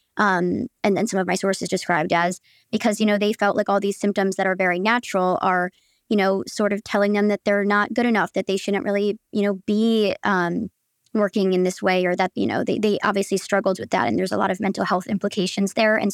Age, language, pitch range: 20-39, English, 190-210 Hz